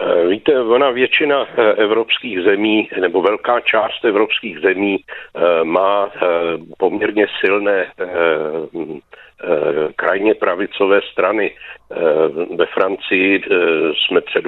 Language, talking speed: Czech, 85 wpm